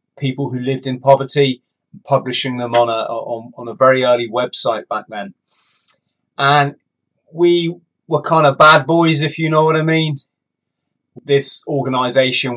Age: 30-49